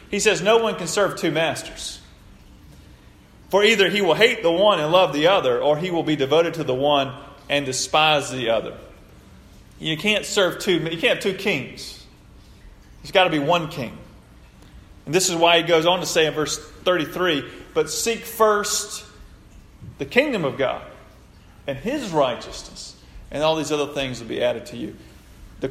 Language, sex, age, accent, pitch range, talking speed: English, male, 30-49, American, 135-180 Hz, 185 wpm